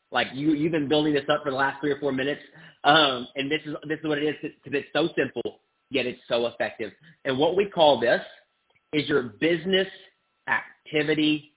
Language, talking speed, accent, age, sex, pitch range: English, 205 wpm, American, 30-49, male, 150-195 Hz